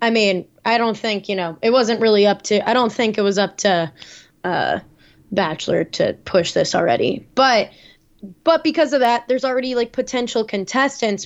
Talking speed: 185 wpm